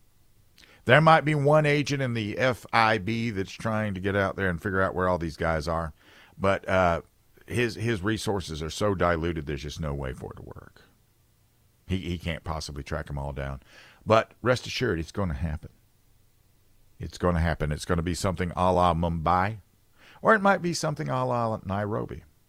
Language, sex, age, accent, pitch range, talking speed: English, male, 50-69, American, 85-115 Hz, 195 wpm